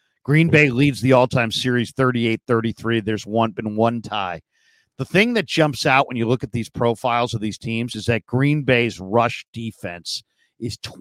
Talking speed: 180 wpm